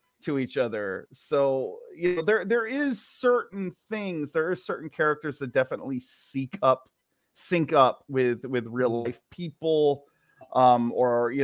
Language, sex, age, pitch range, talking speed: English, male, 30-49, 125-150 Hz, 150 wpm